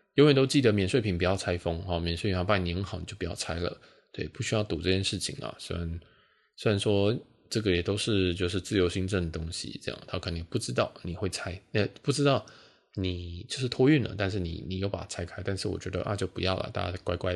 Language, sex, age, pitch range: Chinese, male, 20-39, 90-110 Hz